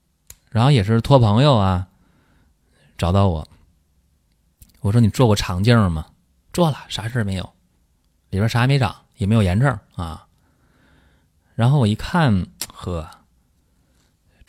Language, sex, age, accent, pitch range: Chinese, male, 20-39, native, 85-115 Hz